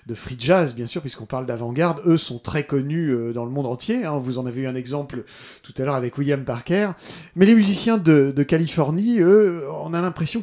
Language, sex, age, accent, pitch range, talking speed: French, male, 30-49, French, 140-200 Hz, 225 wpm